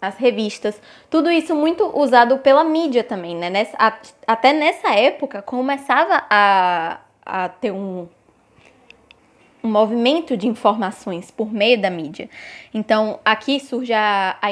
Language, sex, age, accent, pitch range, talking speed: Portuguese, female, 10-29, Brazilian, 210-285 Hz, 135 wpm